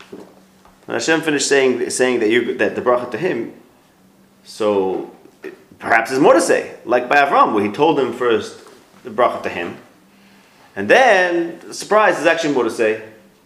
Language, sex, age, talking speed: English, male, 30-49, 165 wpm